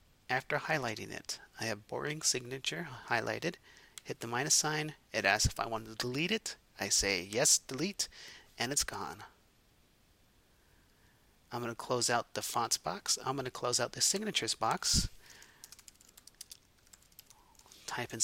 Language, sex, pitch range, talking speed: English, male, 120-170 Hz, 140 wpm